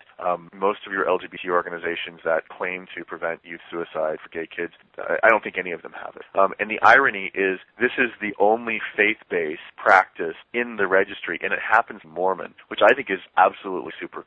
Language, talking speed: English, 200 wpm